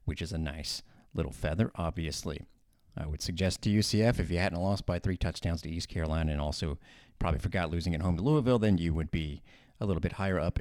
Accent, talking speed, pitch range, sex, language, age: American, 225 wpm, 90-110 Hz, male, English, 40-59